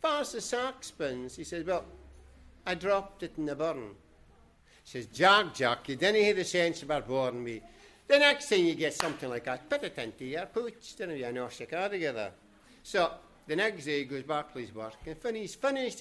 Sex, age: male, 60-79